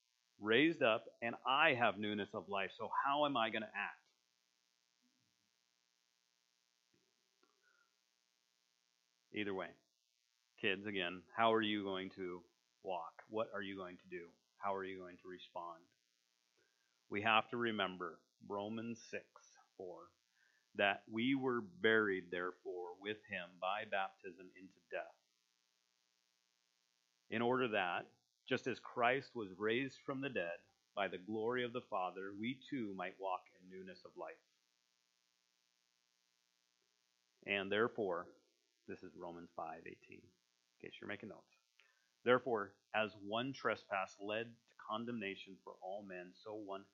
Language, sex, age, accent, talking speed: English, male, 40-59, American, 135 wpm